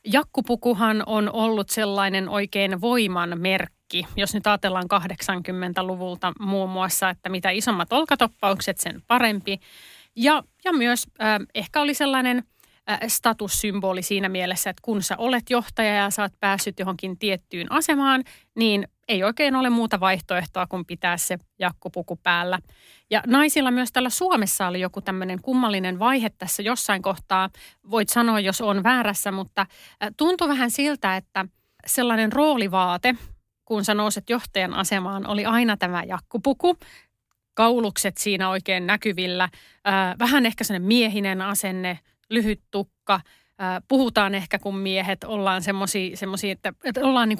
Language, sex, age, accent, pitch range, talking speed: Finnish, female, 30-49, native, 190-235 Hz, 135 wpm